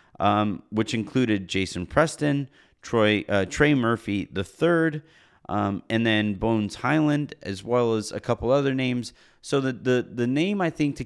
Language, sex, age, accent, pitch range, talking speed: English, male, 30-49, American, 100-130 Hz, 165 wpm